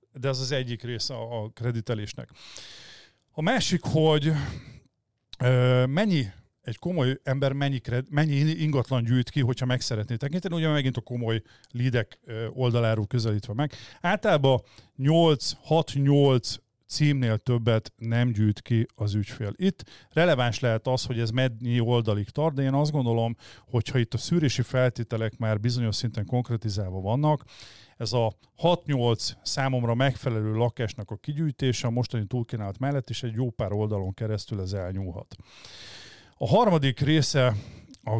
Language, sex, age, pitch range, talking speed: Hungarian, male, 40-59, 110-135 Hz, 135 wpm